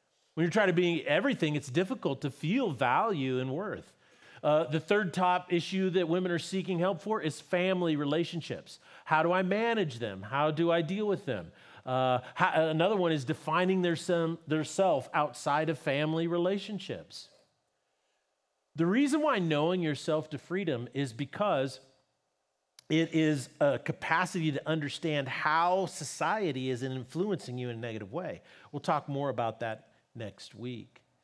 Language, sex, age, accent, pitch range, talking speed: English, male, 40-59, American, 140-185 Hz, 160 wpm